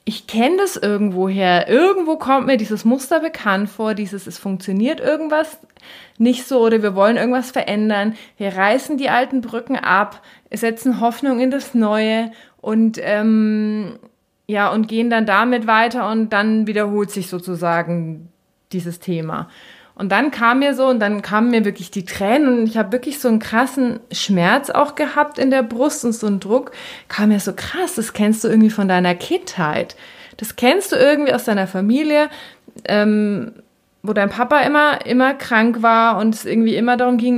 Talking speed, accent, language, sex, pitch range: 175 wpm, German, German, female, 210-250 Hz